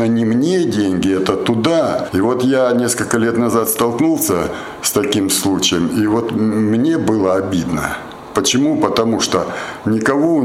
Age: 60-79